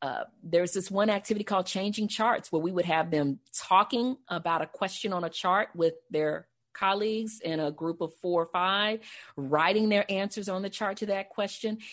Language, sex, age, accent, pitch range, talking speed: English, female, 40-59, American, 165-220 Hz, 195 wpm